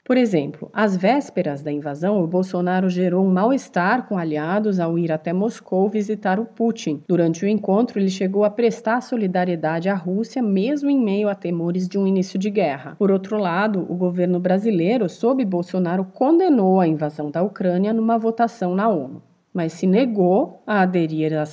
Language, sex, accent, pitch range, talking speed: Portuguese, female, Brazilian, 175-225 Hz, 175 wpm